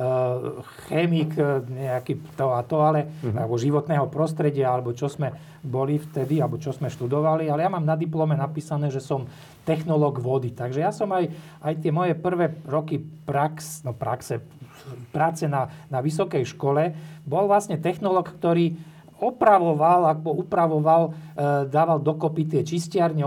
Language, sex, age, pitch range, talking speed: Slovak, male, 40-59, 135-160 Hz, 145 wpm